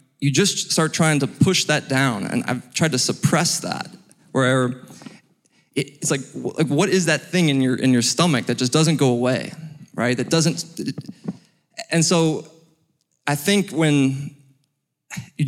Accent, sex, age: American, male, 20-39